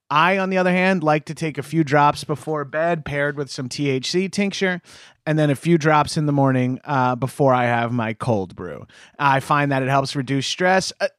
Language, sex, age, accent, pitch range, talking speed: English, male, 30-49, American, 140-180 Hz, 215 wpm